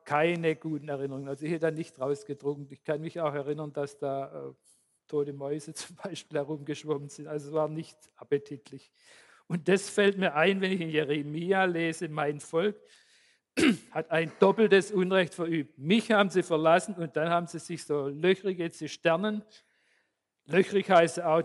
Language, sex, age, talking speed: German, male, 50-69, 175 wpm